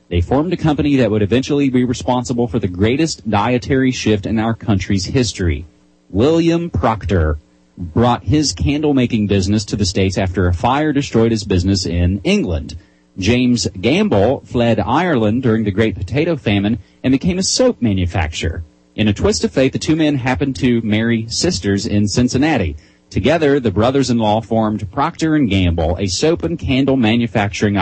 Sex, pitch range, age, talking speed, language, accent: male, 95-130 Hz, 30-49, 160 wpm, English, American